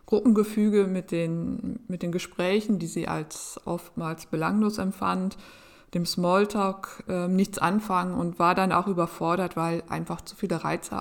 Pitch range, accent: 170-205 Hz, German